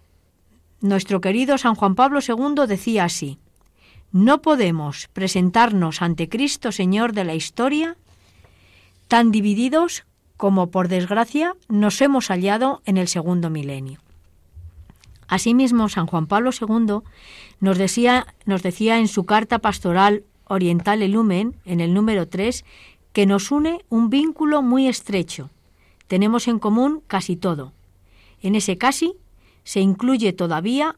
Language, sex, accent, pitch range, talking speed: Spanish, female, Spanish, 165-245 Hz, 125 wpm